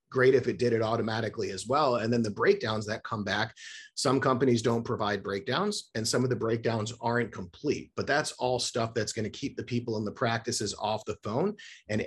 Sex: male